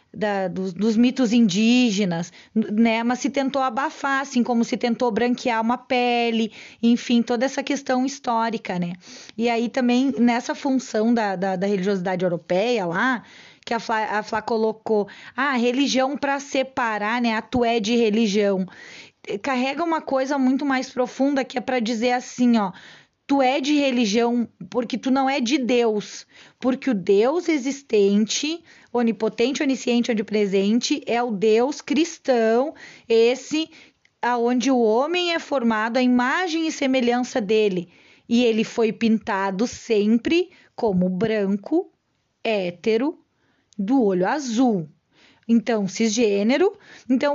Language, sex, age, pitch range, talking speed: Portuguese, female, 20-39, 215-265 Hz, 135 wpm